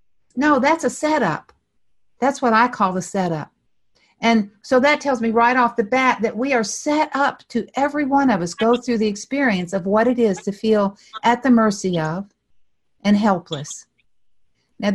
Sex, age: female, 60-79